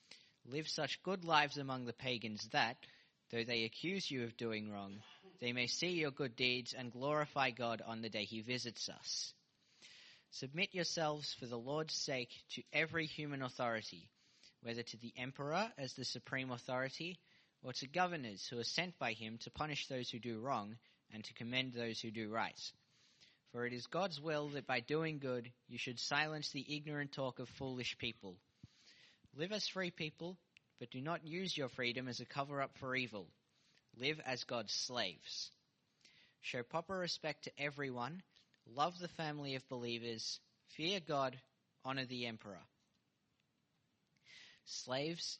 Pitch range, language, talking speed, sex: 120-150 Hz, English, 160 wpm, male